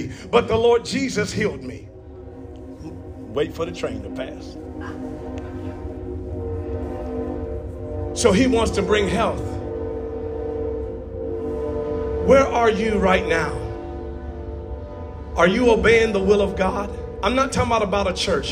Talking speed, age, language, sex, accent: 120 wpm, 40-59, English, male, American